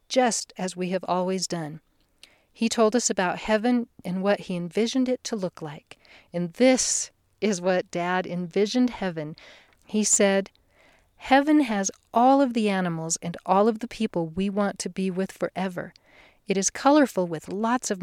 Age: 40-59